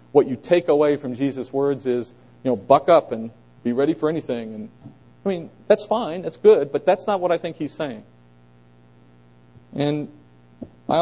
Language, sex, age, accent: English, male, 40-59, American